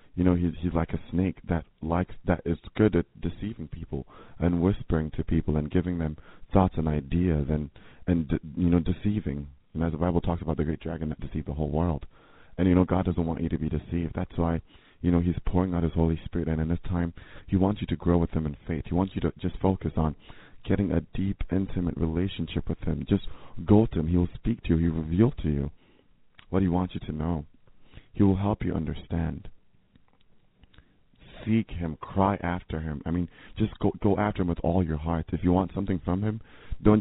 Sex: male